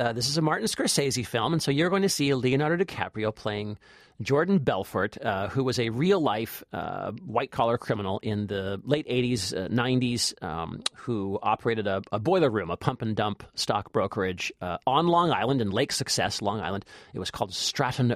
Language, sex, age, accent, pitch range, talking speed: English, male, 40-59, American, 105-135 Hz, 185 wpm